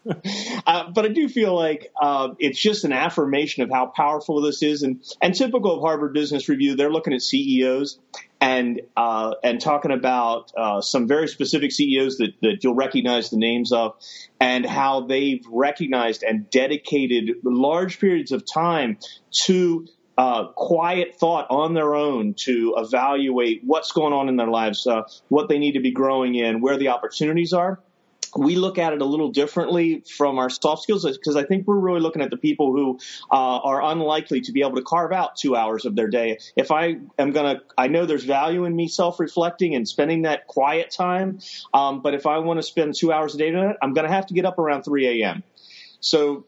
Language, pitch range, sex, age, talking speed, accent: English, 130-165 Hz, male, 30-49, 205 wpm, American